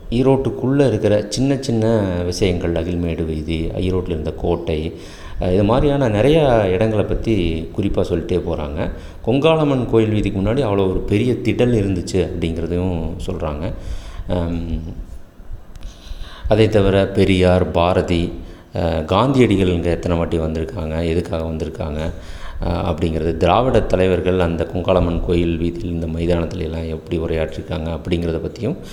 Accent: native